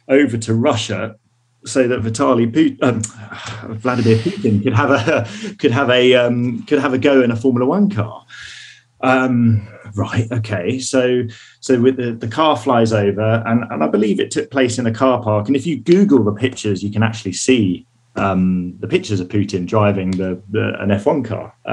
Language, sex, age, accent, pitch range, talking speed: English, male, 30-49, British, 105-130 Hz, 190 wpm